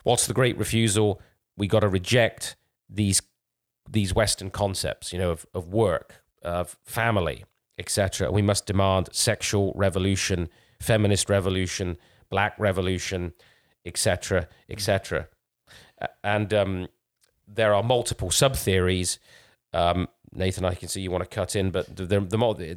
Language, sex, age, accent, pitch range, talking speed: English, male, 40-59, British, 95-110 Hz, 140 wpm